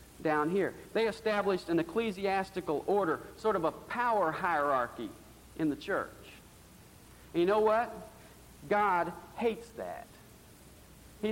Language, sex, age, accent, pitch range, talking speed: English, male, 50-69, American, 155-205 Hz, 115 wpm